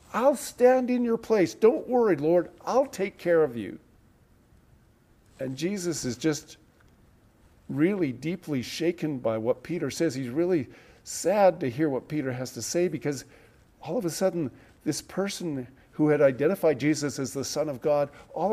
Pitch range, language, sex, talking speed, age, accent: 120-160 Hz, English, male, 165 wpm, 50-69, American